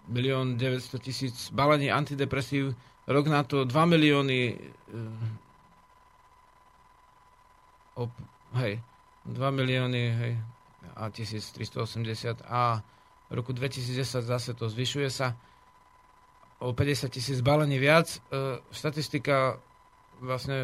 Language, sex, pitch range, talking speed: Slovak, male, 125-145 Hz, 80 wpm